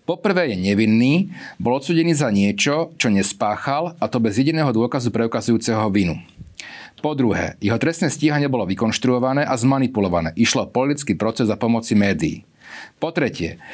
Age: 40-59